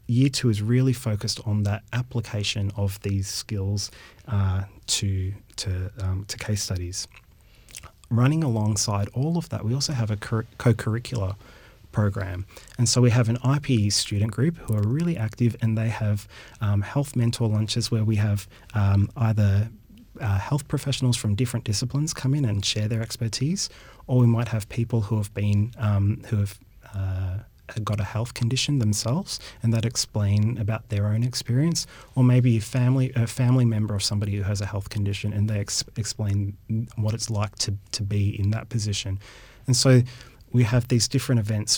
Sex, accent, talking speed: male, Australian, 180 wpm